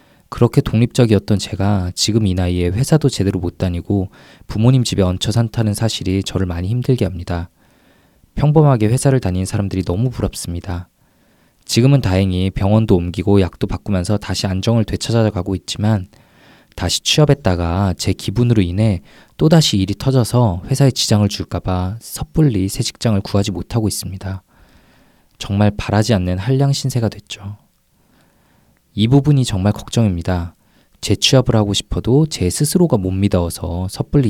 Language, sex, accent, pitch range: Korean, male, native, 95-115 Hz